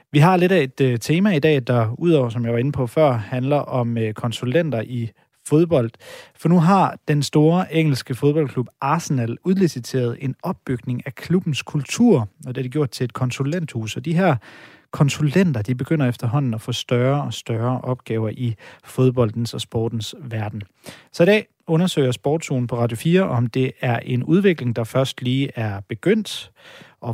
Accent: native